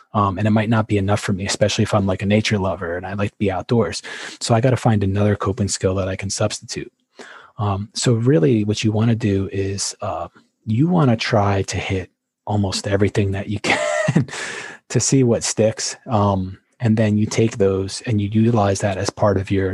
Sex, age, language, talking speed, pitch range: male, 20-39, English, 220 wpm, 100-115 Hz